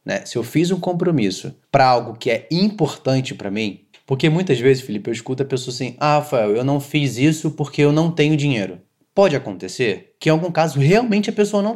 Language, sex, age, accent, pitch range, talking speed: Portuguese, male, 20-39, Brazilian, 130-185 Hz, 220 wpm